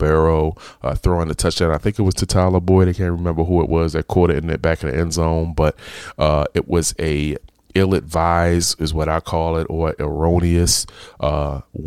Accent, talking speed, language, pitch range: American, 210 wpm, English, 80-85 Hz